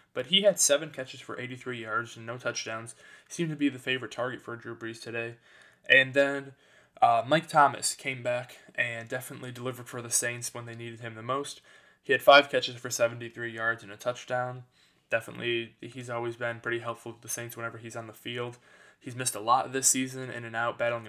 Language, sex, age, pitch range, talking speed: English, male, 20-39, 115-130 Hz, 210 wpm